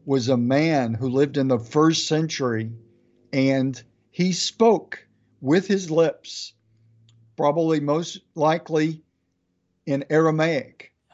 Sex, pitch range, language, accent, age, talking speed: male, 125-170 Hz, English, American, 50-69, 110 wpm